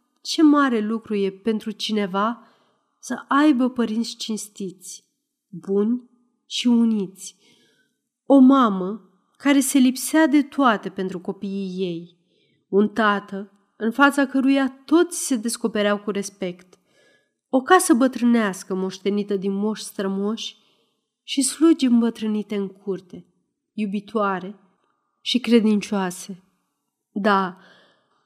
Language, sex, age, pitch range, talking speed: Romanian, female, 30-49, 195-245 Hz, 105 wpm